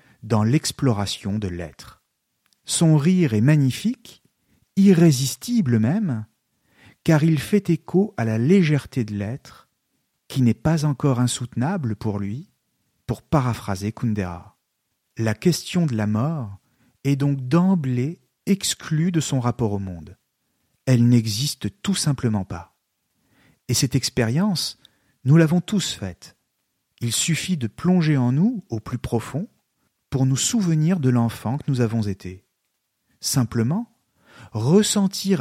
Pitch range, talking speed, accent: 110-155 Hz, 125 wpm, French